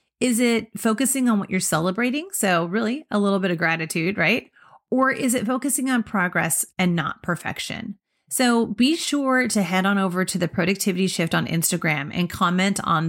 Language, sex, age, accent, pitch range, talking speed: English, female, 30-49, American, 175-240 Hz, 185 wpm